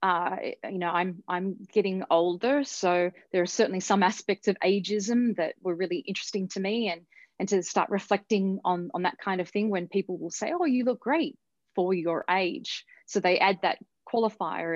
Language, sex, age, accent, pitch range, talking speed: English, female, 30-49, Australian, 180-225 Hz, 195 wpm